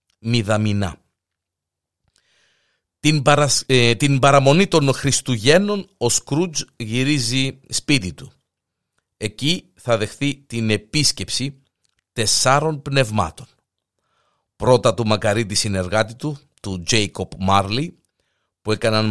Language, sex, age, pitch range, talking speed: Greek, male, 50-69, 95-140 Hz, 85 wpm